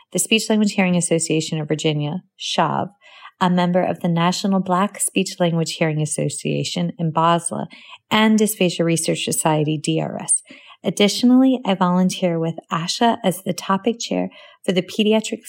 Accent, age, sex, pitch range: American, 30-49, female, 165-205 Hz